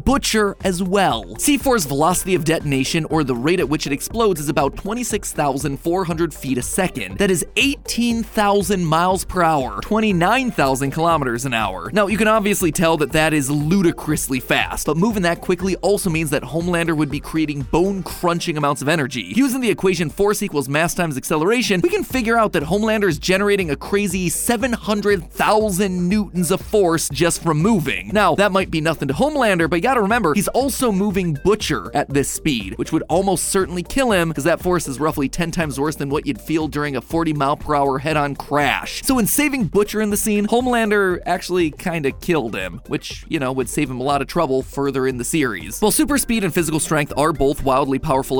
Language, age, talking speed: English, 20-39, 200 wpm